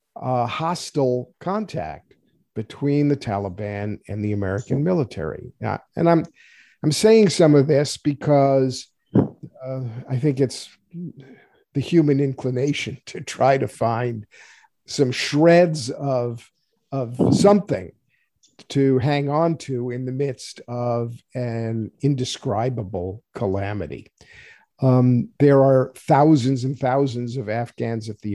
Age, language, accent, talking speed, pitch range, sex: 50-69, English, American, 120 wpm, 125-150 Hz, male